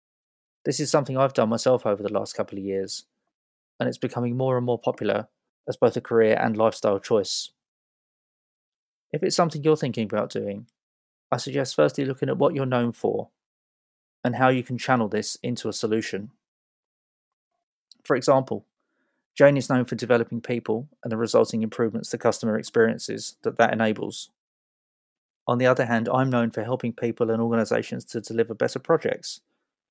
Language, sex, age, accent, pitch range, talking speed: English, male, 20-39, British, 115-130 Hz, 170 wpm